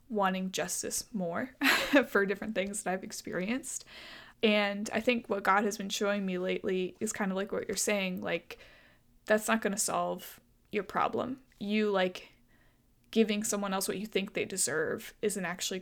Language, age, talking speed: English, 20-39, 175 wpm